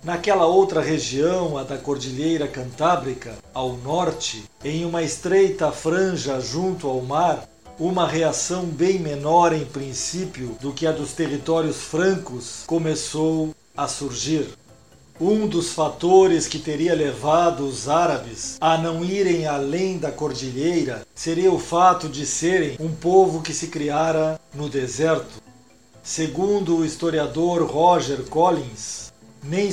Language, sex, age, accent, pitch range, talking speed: Portuguese, male, 50-69, Brazilian, 145-175 Hz, 125 wpm